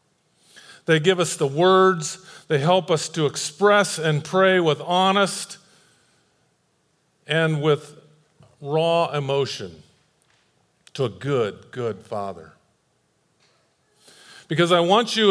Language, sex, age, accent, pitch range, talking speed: English, male, 40-59, American, 155-190 Hz, 105 wpm